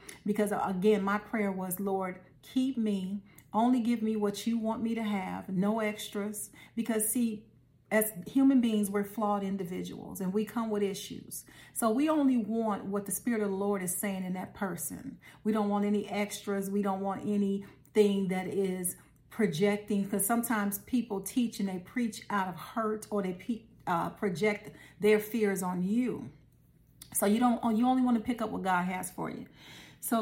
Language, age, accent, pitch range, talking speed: English, 40-59, American, 190-225 Hz, 180 wpm